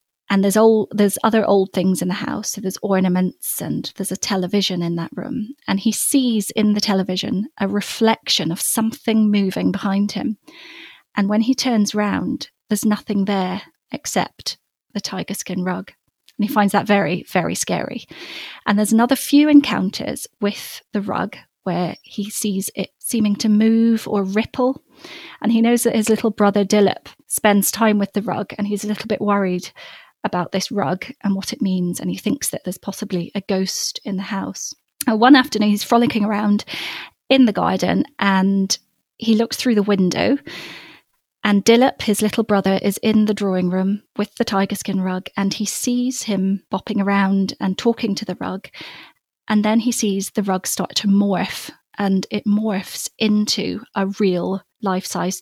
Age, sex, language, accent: 30-49, female, English, British